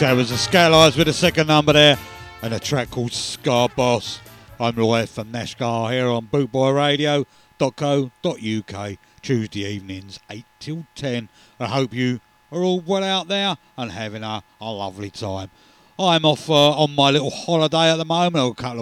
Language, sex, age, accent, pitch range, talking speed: English, male, 50-69, British, 110-150 Hz, 170 wpm